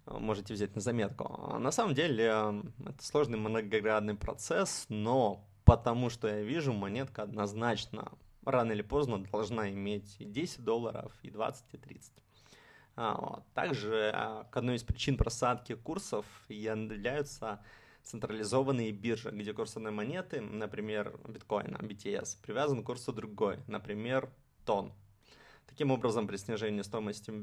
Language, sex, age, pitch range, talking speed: Russian, male, 20-39, 105-125 Hz, 125 wpm